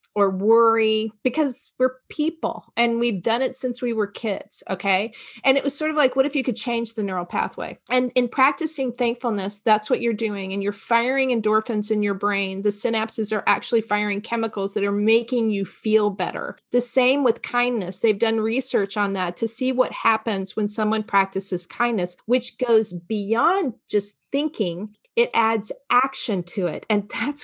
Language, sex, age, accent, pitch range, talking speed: English, female, 40-59, American, 215-270 Hz, 185 wpm